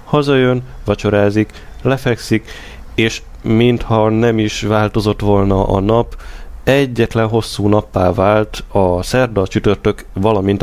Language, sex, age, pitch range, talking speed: Hungarian, male, 30-49, 95-110 Hz, 115 wpm